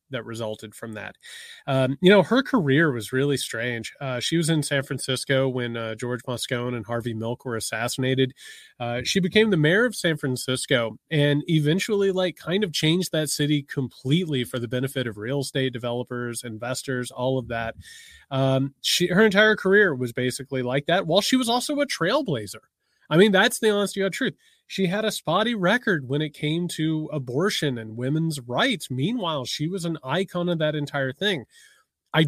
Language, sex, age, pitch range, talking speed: English, male, 30-49, 130-180 Hz, 185 wpm